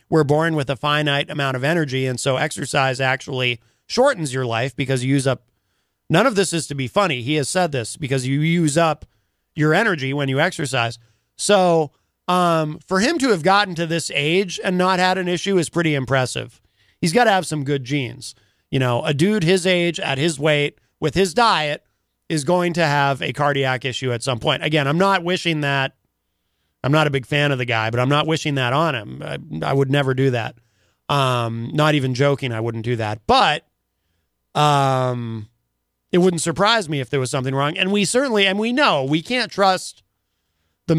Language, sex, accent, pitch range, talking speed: English, male, American, 125-165 Hz, 205 wpm